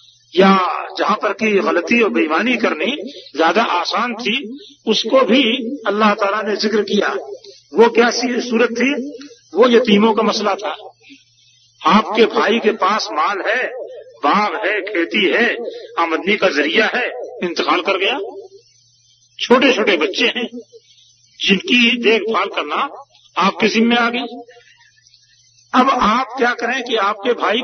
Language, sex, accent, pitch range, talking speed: Hindi, male, native, 180-245 Hz, 135 wpm